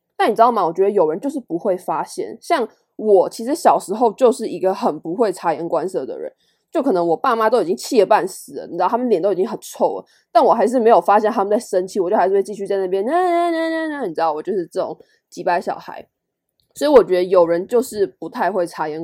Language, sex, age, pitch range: Chinese, female, 20-39, 180-260 Hz